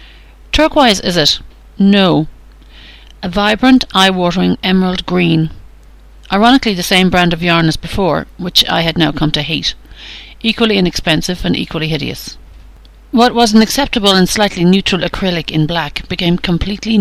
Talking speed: 145 wpm